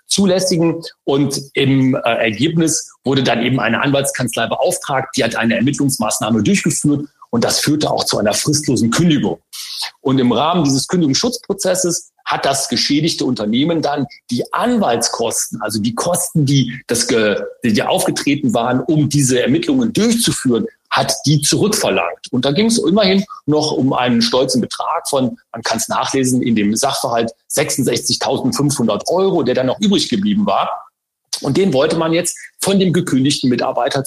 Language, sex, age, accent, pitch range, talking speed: German, male, 40-59, German, 130-190 Hz, 150 wpm